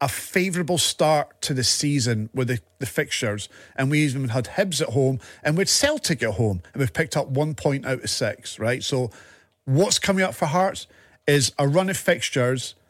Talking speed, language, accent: 200 wpm, English, British